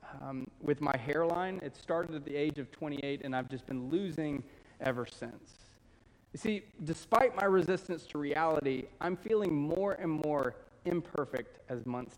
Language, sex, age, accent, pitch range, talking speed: English, male, 30-49, American, 130-190 Hz, 165 wpm